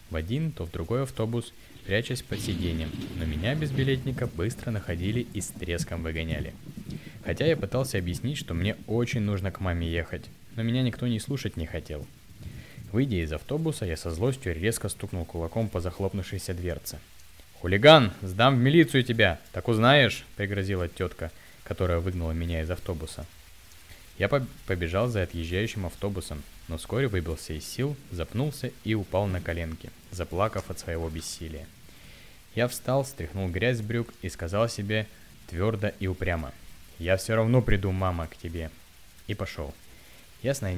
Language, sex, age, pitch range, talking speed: Russian, male, 20-39, 85-115 Hz, 155 wpm